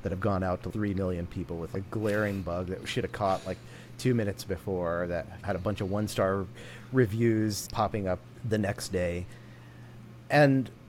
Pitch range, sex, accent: 85-115 Hz, male, American